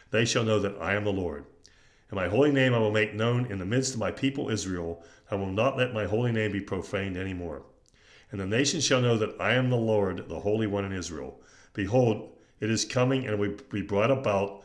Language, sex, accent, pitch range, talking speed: English, male, American, 100-125 Hz, 235 wpm